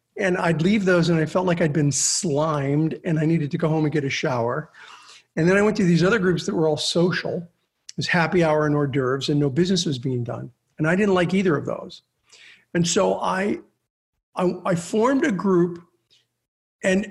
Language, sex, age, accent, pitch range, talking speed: English, male, 50-69, American, 155-215 Hz, 220 wpm